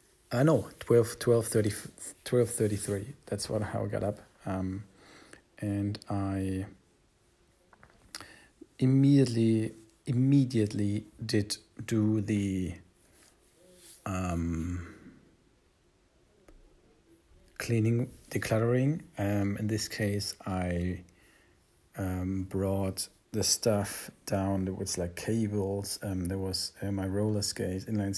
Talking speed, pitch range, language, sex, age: 100 wpm, 95-110 Hz, English, male, 40-59